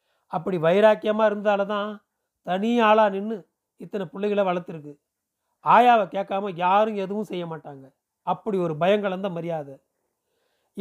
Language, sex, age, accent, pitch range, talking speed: Tamil, male, 40-59, native, 175-215 Hz, 105 wpm